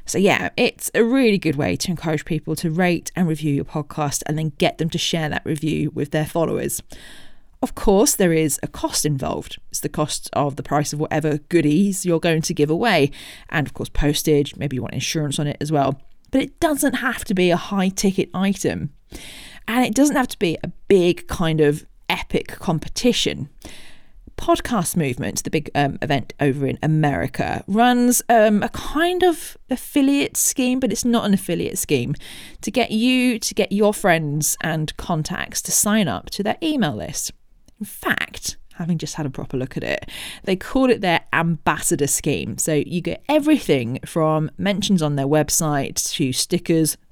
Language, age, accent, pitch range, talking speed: English, 40-59, British, 150-210 Hz, 185 wpm